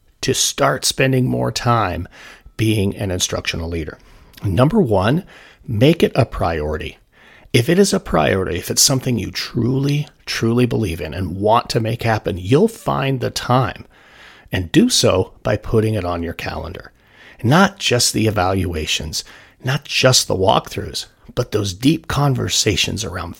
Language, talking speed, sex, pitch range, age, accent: English, 150 wpm, male, 95-135 Hz, 40-59, American